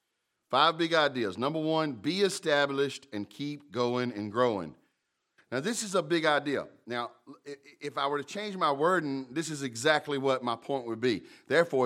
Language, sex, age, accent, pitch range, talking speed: English, male, 40-59, American, 125-165 Hz, 175 wpm